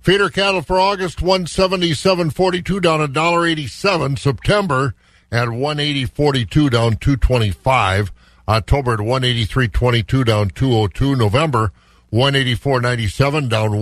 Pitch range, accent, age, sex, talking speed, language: 105-135 Hz, American, 50-69, male, 185 wpm, English